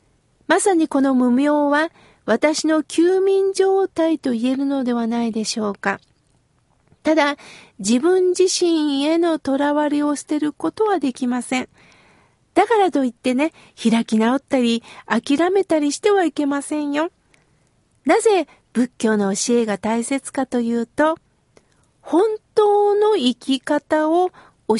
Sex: female